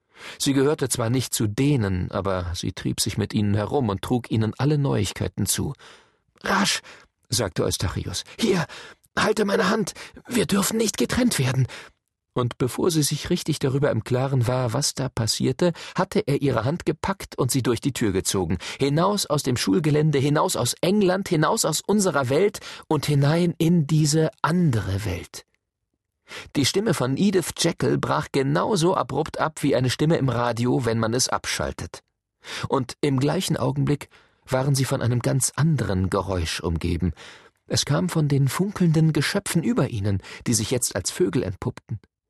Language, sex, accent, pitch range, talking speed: German, male, German, 115-155 Hz, 165 wpm